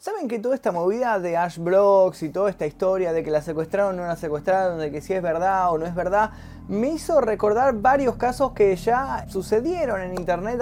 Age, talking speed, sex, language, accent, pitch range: 20-39, 220 wpm, male, Spanish, Argentinian, 180-250 Hz